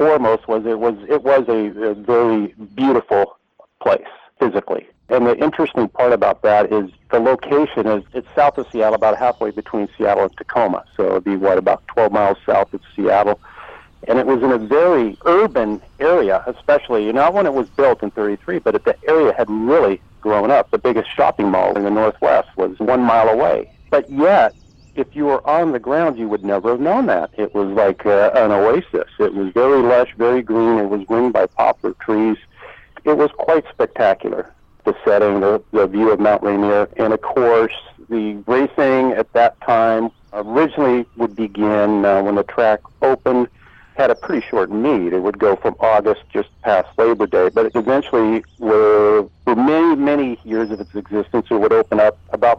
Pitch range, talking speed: 105-125 Hz, 195 wpm